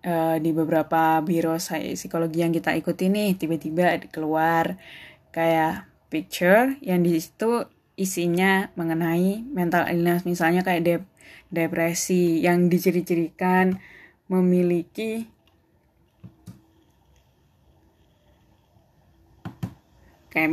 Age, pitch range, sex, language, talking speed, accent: 20-39, 165-185 Hz, female, Indonesian, 80 wpm, native